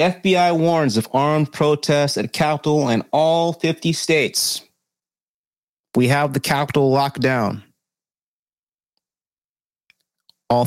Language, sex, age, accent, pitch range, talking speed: English, male, 30-49, American, 115-155 Hz, 100 wpm